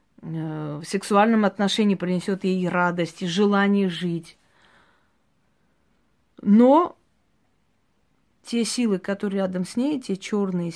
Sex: female